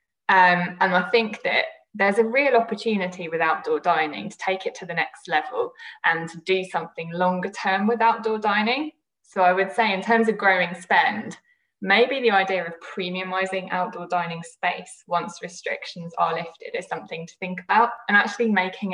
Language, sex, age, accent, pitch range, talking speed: English, female, 10-29, British, 170-225 Hz, 175 wpm